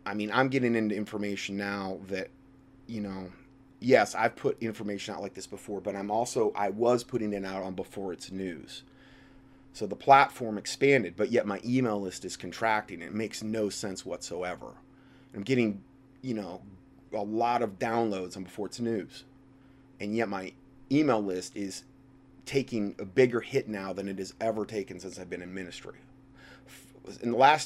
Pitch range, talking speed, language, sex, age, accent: 100-130 Hz, 180 wpm, English, male, 30-49, American